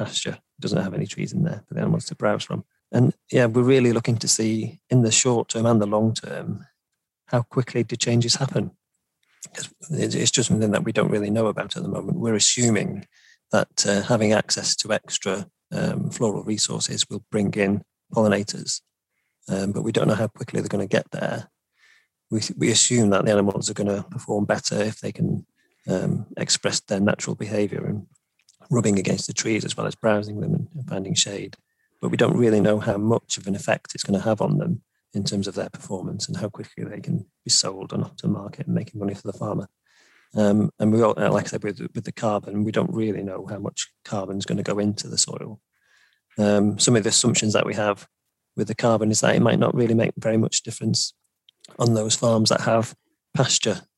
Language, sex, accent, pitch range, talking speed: English, male, British, 105-120 Hz, 215 wpm